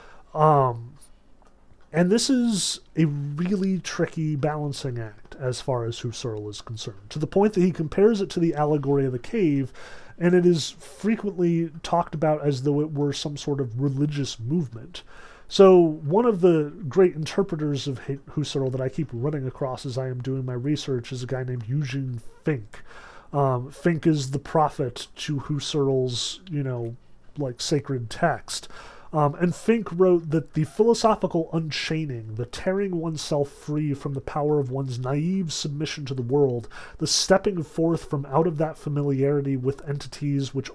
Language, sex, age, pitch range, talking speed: English, male, 30-49, 135-165 Hz, 165 wpm